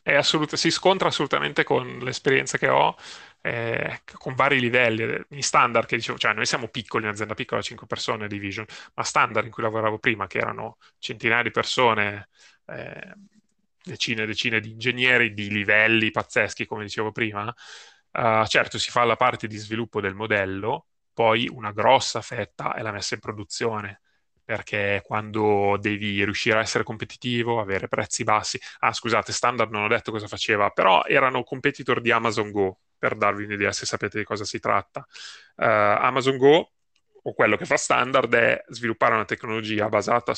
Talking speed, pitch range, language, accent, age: 170 wpm, 105-130 Hz, Italian, native, 20-39